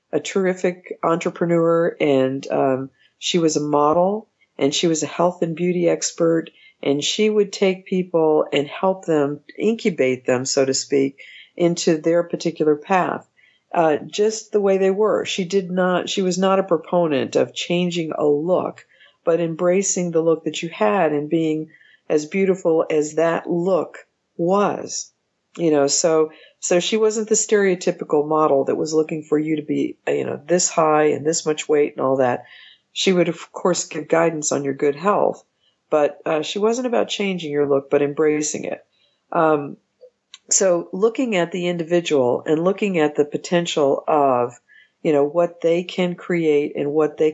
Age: 50-69